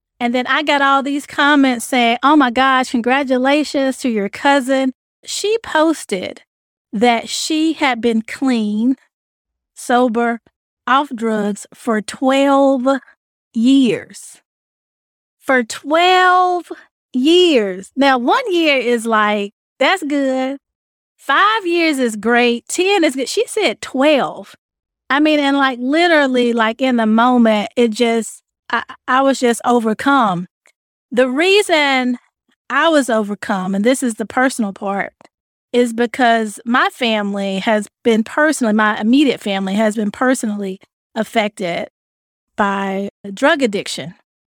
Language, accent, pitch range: English, American, 220-275 Hz